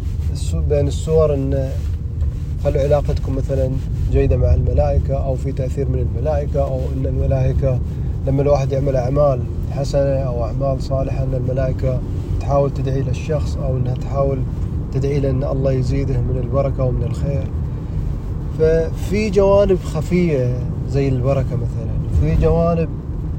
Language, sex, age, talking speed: Arabic, male, 30-49, 130 wpm